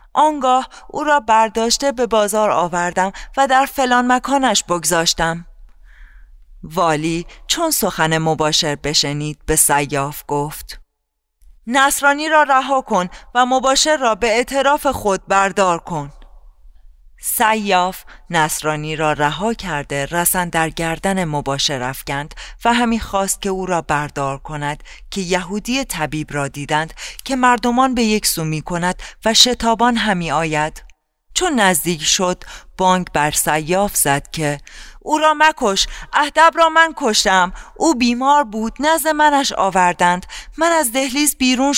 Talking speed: 130 wpm